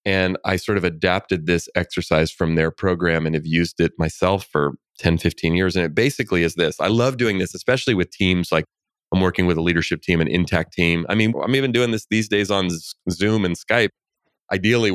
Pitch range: 85-95 Hz